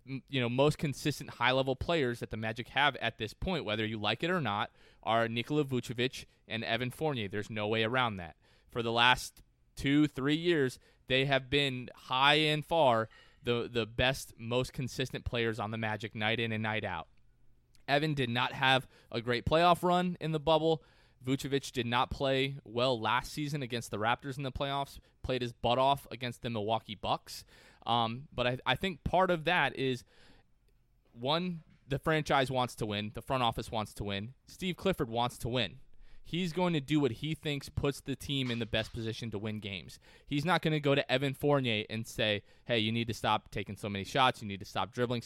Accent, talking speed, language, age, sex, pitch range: American, 205 wpm, English, 20-39, male, 115-145 Hz